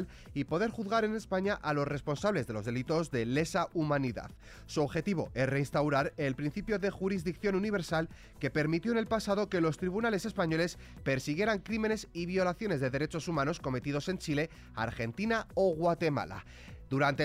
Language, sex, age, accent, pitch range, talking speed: Spanish, male, 30-49, Spanish, 135-195 Hz, 160 wpm